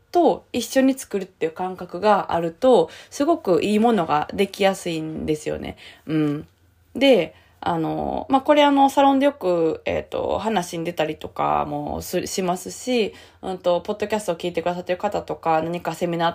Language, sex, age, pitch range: Japanese, female, 20-39, 155-240 Hz